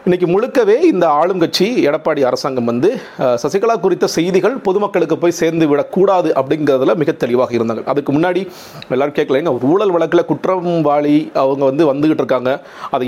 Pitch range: 130-165 Hz